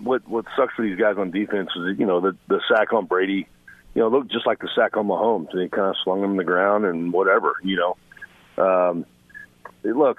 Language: English